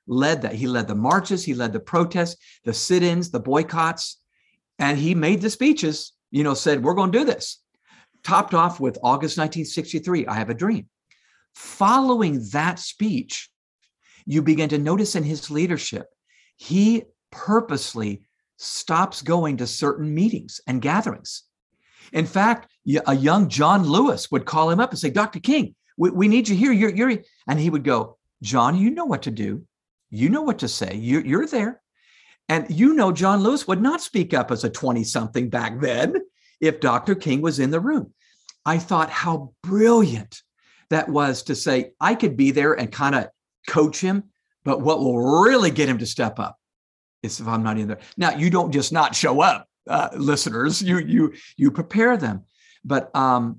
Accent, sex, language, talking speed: American, male, English, 180 wpm